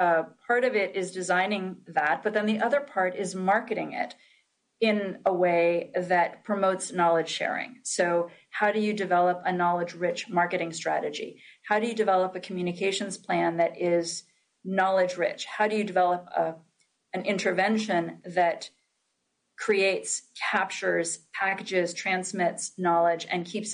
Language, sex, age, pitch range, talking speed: English, female, 40-59, 170-195 Hz, 140 wpm